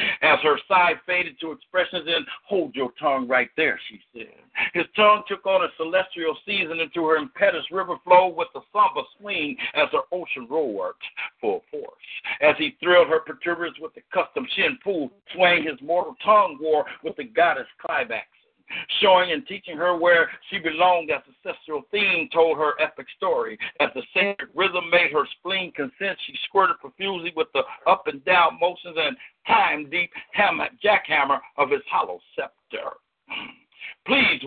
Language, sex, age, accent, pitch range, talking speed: English, male, 60-79, American, 155-200 Hz, 170 wpm